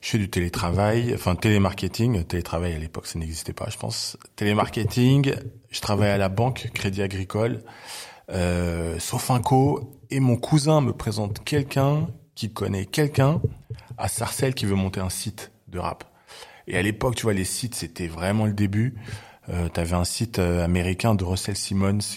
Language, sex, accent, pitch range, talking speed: French, male, French, 95-115 Hz, 170 wpm